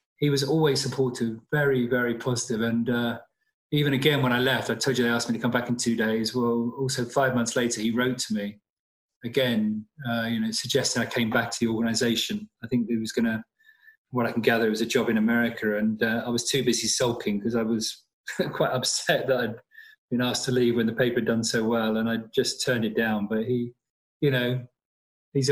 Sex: male